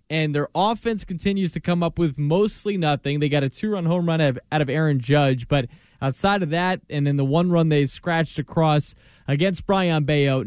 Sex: male